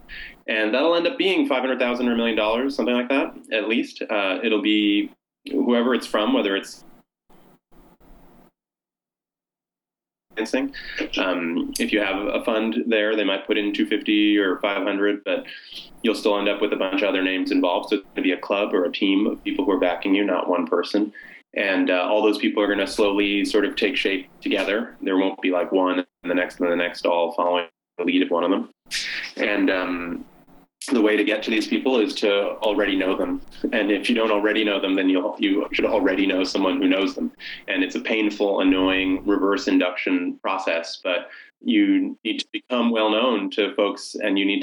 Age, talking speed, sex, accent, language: 20-39, 215 wpm, male, American, English